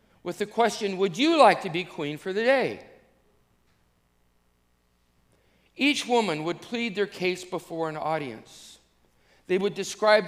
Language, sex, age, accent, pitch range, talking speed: English, male, 50-69, American, 130-210 Hz, 140 wpm